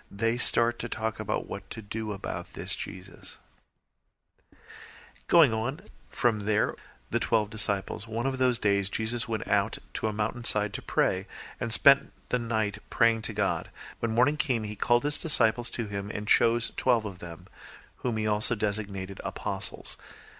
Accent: American